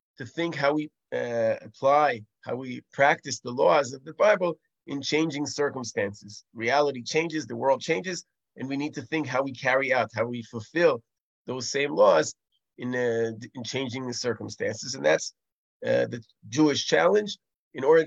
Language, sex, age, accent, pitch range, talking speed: English, male, 30-49, American, 120-155 Hz, 170 wpm